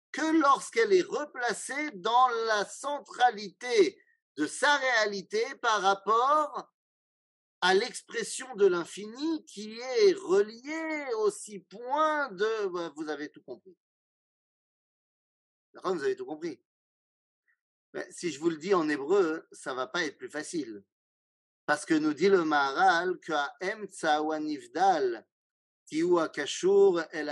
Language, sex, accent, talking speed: French, male, French, 135 wpm